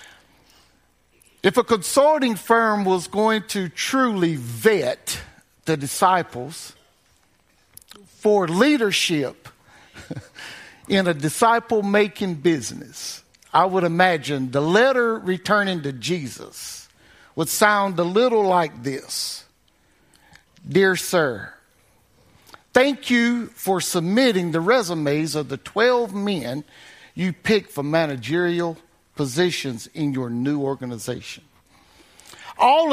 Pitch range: 155-220 Hz